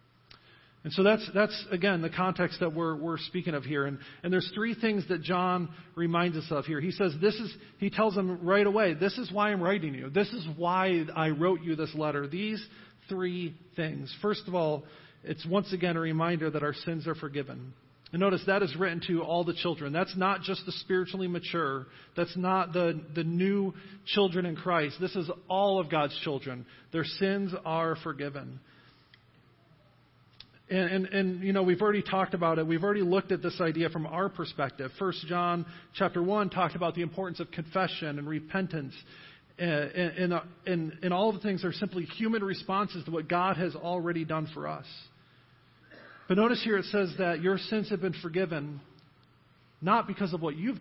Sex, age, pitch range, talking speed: male, 40-59, 160-190 Hz, 195 wpm